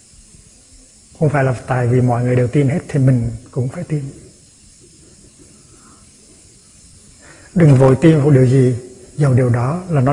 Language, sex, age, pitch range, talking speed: Vietnamese, male, 60-79, 125-155 Hz, 155 wpm